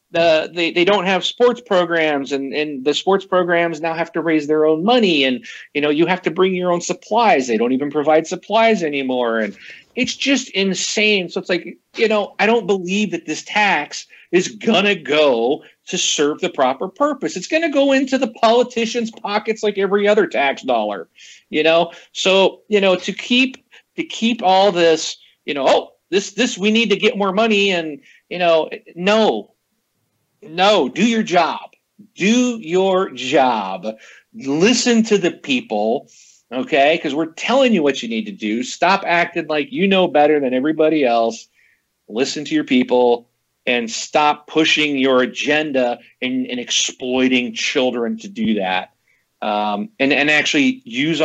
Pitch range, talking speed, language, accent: 135-210 Hz, 175 wpm, English, American